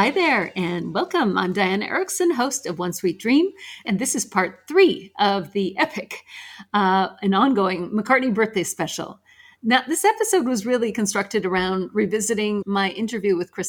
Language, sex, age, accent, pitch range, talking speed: English, female, 50-69, American, 180-255 Hz, 165 wpm